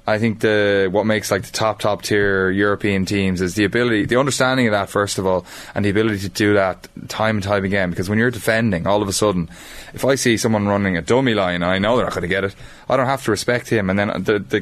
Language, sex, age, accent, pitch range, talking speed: English, male, 20-39, Irish, 100-115 Hz, 270 wpm